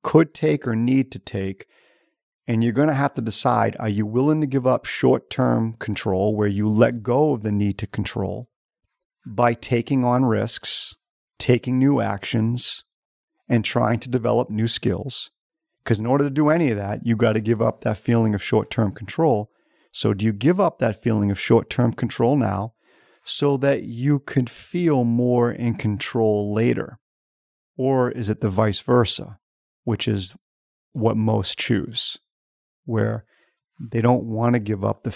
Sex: male